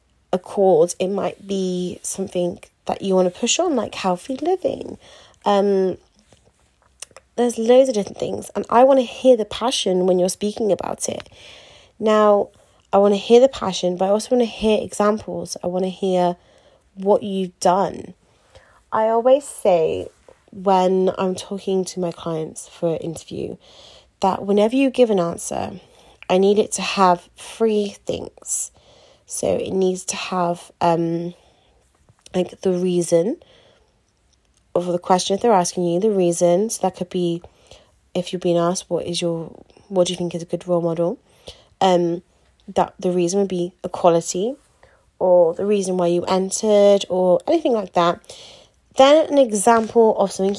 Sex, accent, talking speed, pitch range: female, British, 165 wpm, 180-215 Hz